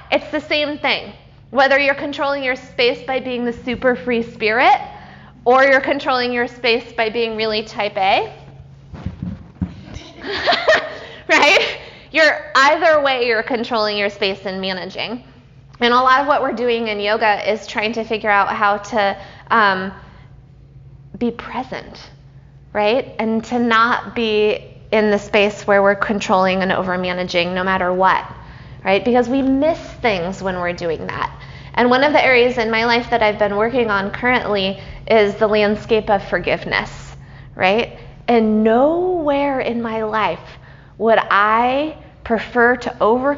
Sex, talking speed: female, 150 wpm